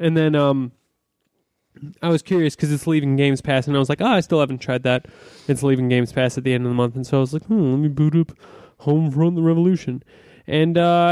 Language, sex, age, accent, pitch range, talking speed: English, male, 20-39, American, 135-170 Hz, 250 wpm